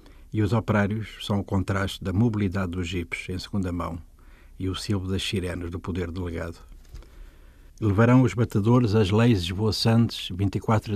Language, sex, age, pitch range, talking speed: Portuguese, male, 60-79, 90-110 Hz, 155 wpm